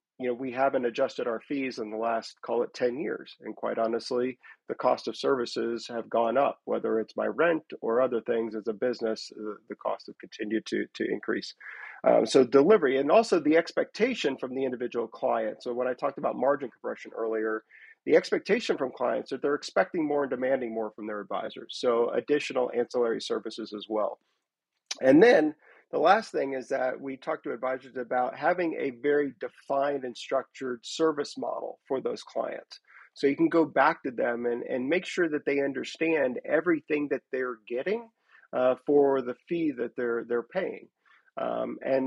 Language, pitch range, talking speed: English, 120-150 Hz, 185 wpm